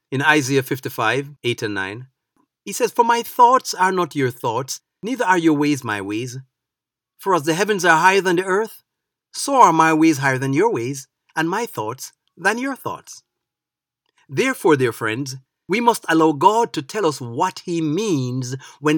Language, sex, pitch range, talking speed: English, male, 130-175 Hz, 185 wpm